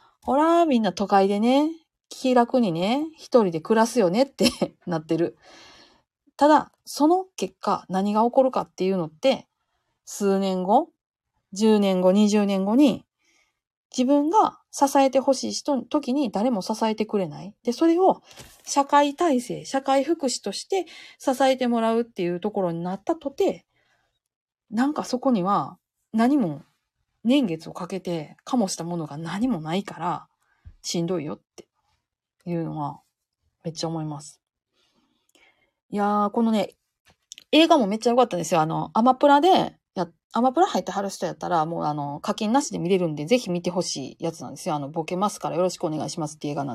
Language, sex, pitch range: Japanese, female, 175-265 Hz